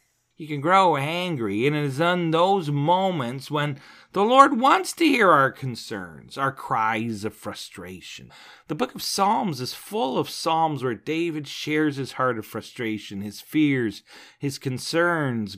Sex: male